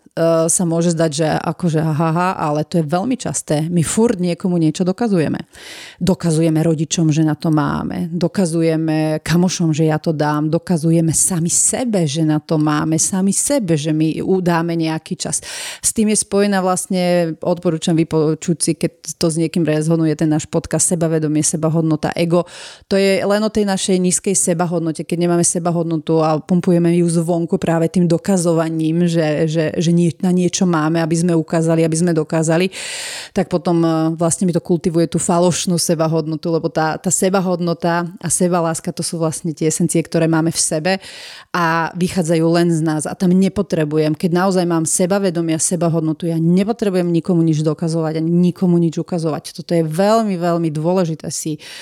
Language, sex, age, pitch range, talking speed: Slovak, female, 30-49, 160-180 Hz, 170 wpm